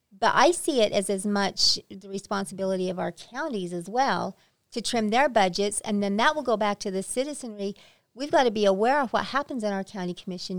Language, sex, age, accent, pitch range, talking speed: English, female, 40-59, American, 190-230 Hz, 220 wpm